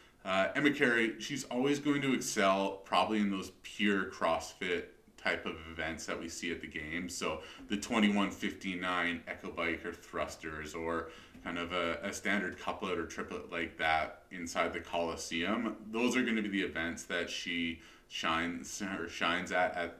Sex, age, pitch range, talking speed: male, 30-49, 85-100 Hz, 170 wpm